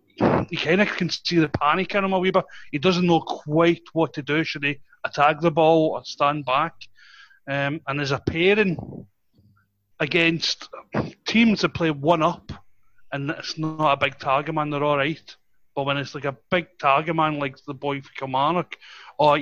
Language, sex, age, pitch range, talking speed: English, male, 30-49, 140-170 Hz, 190 wpm